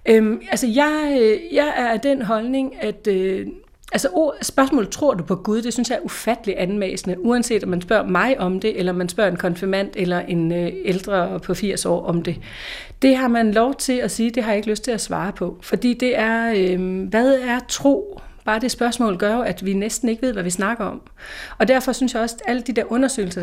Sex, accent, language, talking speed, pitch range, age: female, native, Danish, 235 wpm, 185-240 Hz, 40-59